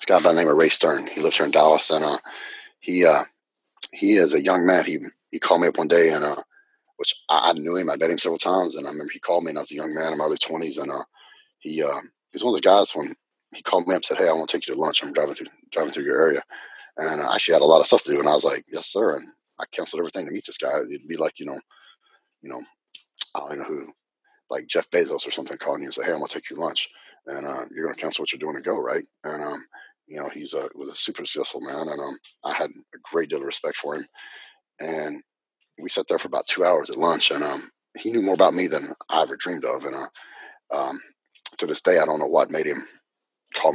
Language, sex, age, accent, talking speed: English, male, 30-49, American, 285 wpm